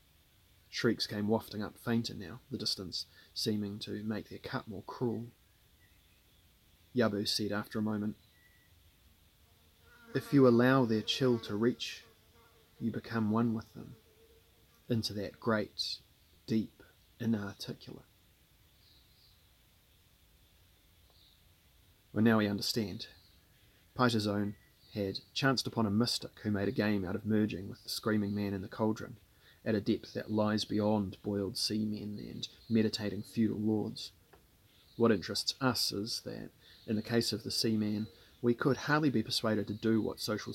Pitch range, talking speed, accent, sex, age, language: 100-115 Hz, 140 wpm, Australian, male, 30-49, English